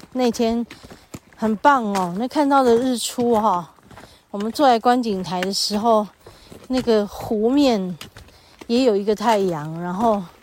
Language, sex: Chinese, female